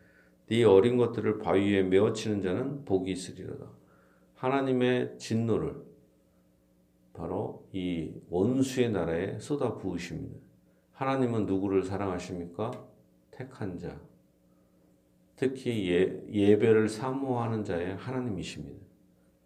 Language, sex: Korean, male